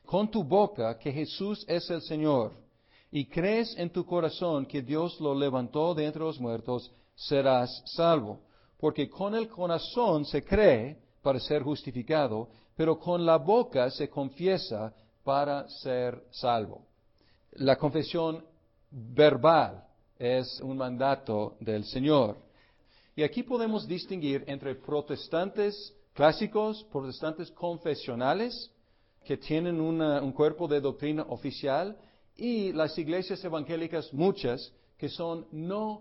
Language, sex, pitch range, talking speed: Spanish, male, 130-170 Hz, 120 wpm